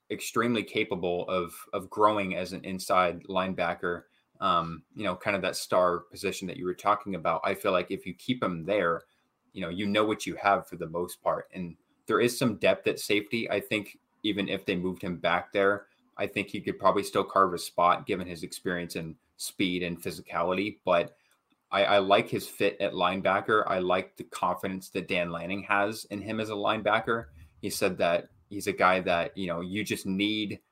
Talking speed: 205 wpm